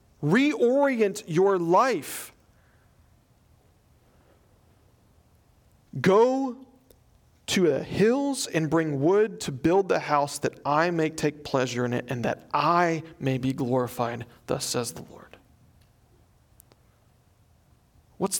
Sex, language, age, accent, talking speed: male, English, 40-59, American, 105 wpm